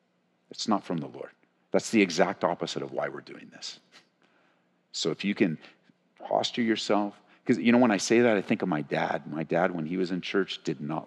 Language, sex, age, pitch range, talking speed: English, male, 50-69, 85-100 Hz, 220 wpm